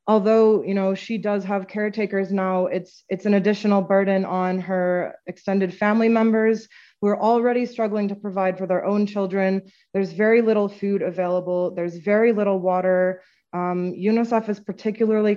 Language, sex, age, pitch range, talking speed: English, female, 20-39, 190-215 Hz, 150 wpm